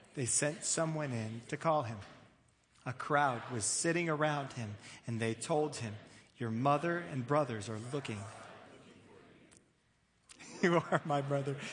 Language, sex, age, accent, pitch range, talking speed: English, male, 40-59, American, 120-185 Hz, 140 wpm